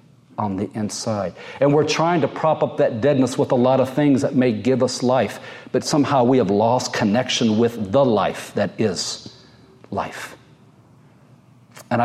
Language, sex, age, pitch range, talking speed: English, male, 50-69, 120-150 Hz, 170 wpm